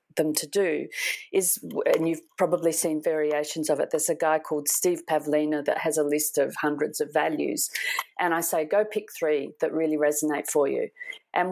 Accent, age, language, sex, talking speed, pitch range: Australian, 40-59, English, female, 195 wpm, 155-215 Hz